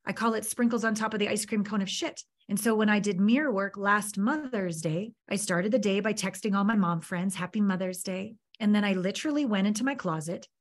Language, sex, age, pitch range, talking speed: English, female, 30-49, 185-230 Hz, 250 wpm